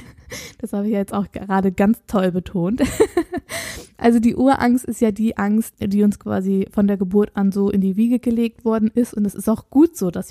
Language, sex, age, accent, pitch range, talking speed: German, female, 20-39, German, 200-230 Hz, 215 wpm